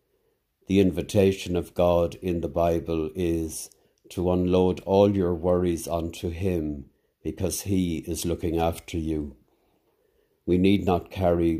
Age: 60-79